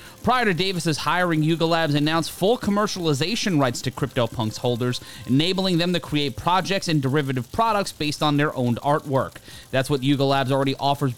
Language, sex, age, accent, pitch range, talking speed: English, male, 30-49, American, 130-175 Hz, 170 wpm